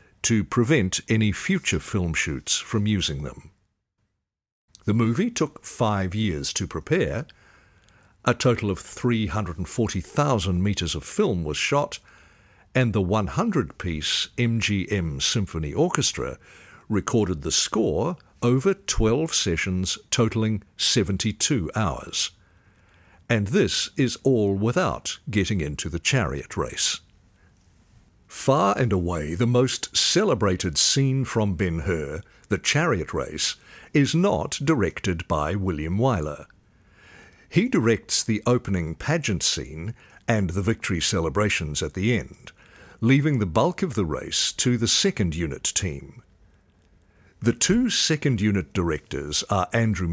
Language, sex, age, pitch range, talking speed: English, male, 60-79, 90-120 Hz, 120 wpm